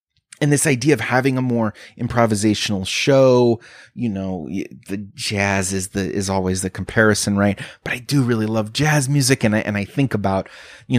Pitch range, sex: 95-120 Hz, male